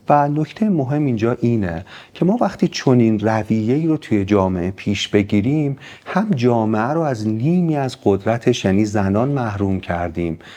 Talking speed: 155 wpm